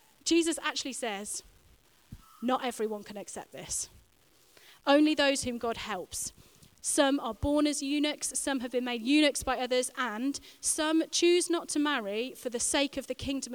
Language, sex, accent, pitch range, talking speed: English, female, British, 225-295 Hz, 165 wpm